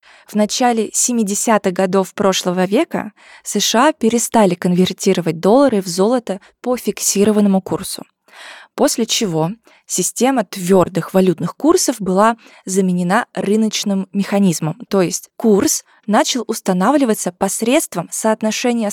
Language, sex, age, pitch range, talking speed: Russian, female, 20-39, 185-235 Hz, 100 wpm